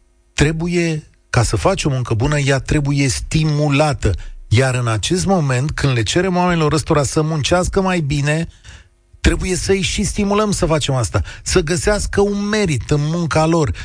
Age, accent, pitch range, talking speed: 30-49, native, 120-170 Hz, 160 wpm